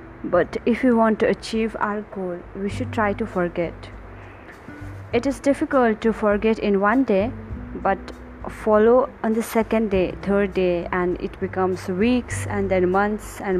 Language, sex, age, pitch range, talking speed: English, female, 20-39, 180-230 Hz, 165 wpm